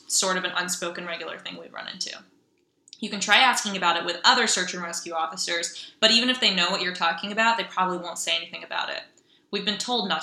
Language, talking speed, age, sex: English, 240 wpm, 20-39, female